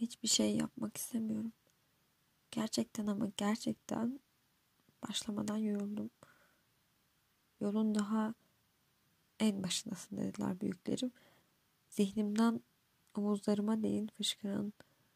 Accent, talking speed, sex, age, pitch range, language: native, 75 wpm, female, 20-39, 205-230 Hz, Turkish